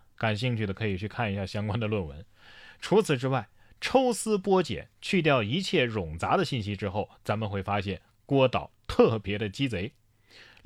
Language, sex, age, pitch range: Chinese, male, 20-39, 105-170 Hz